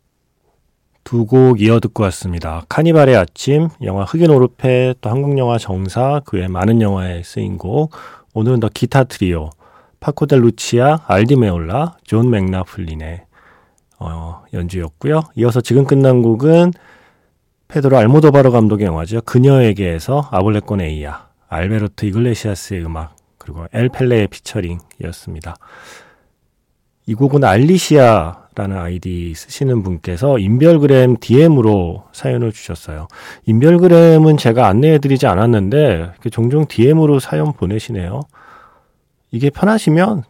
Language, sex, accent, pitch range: Korean, male, native, 95-135 Hz